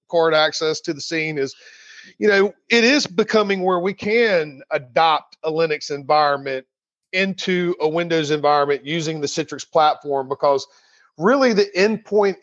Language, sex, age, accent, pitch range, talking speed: English, male, 40-59, American, 155-200 Hz, 145 wpm